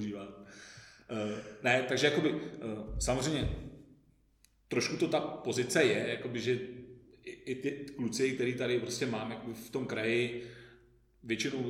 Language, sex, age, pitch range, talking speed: Czech, male, 40-59, 110-130 Hz, 115 wpm